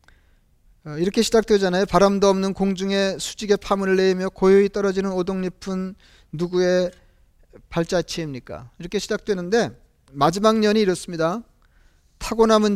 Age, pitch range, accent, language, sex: 40-59, 170-215 Hz, native, Korean, male